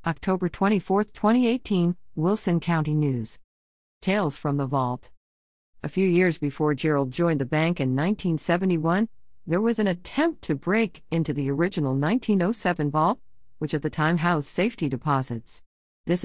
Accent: American